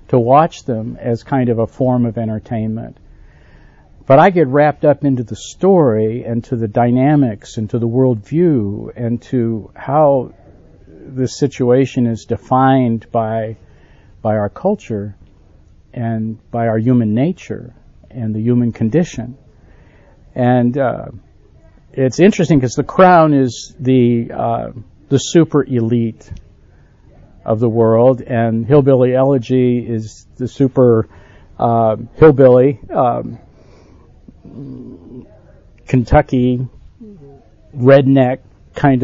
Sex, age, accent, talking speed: male, 50-69, American, 115 wpm